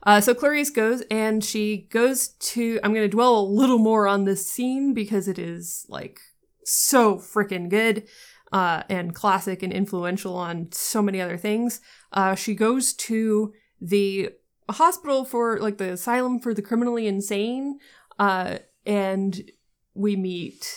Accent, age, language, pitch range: American, 30-49, English, 190-235 Hz